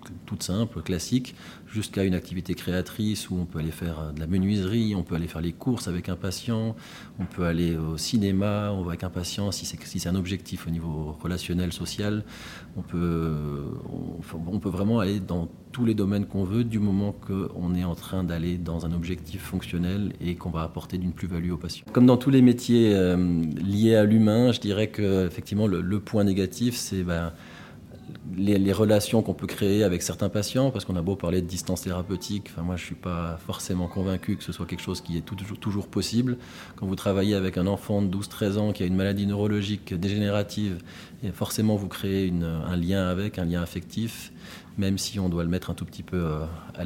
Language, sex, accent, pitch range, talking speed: French, male, French, 85-100 Hz, 210 wpm